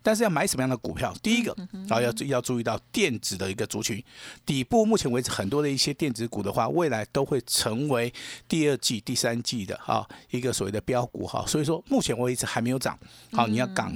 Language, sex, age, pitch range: Chinese, male, 50-69, 115-160 Hz